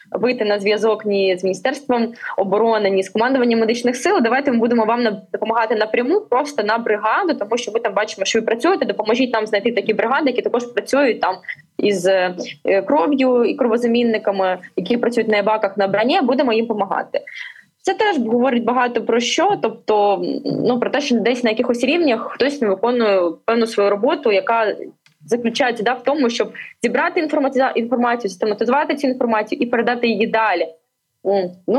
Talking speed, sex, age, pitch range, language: 165 wpm, female, 20-39, 210-265 Hz, Ukrainian